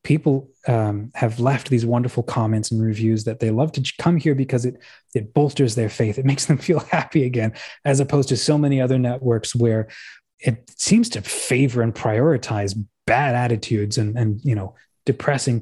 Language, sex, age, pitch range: English, male, 20-39, 115-135 Hz